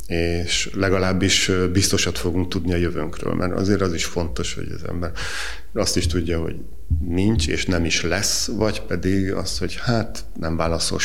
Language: Hungarian